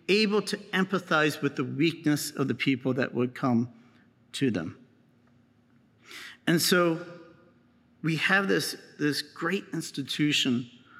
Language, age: English, 50-69